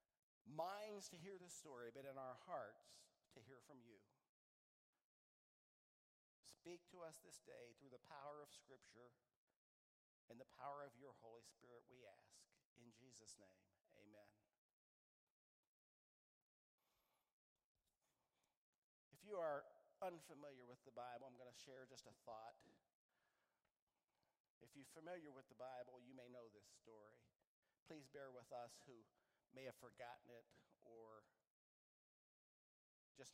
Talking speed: 130 wpm